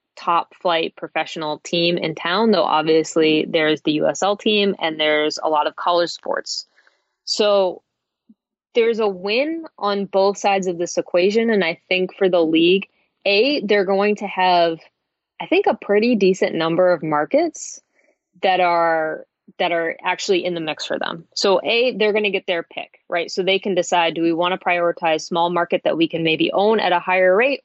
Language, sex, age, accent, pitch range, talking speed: English, female, 20-39, American, 165-200 Hz, 185 wpm